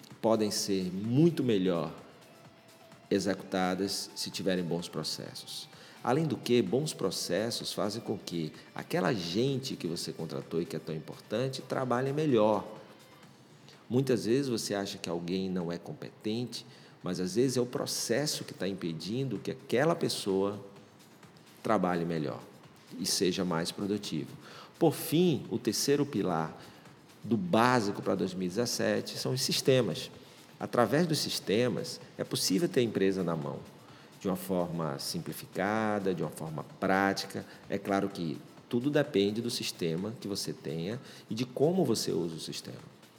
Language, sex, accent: Portuguese, male, Brazilian